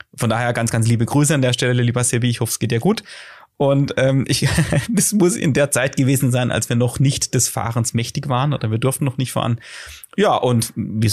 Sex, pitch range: male, 110-130 Hz